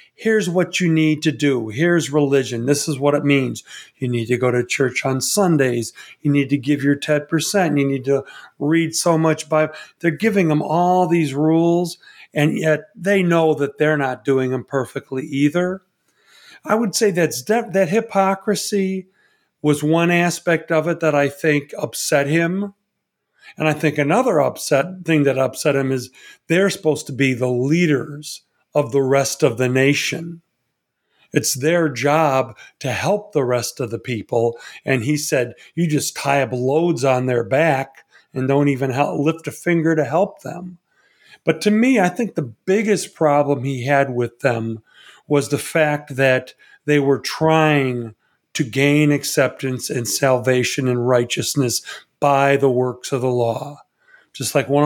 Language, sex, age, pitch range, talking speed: English, male, 40-59, 135-165 Hz, 170 wpm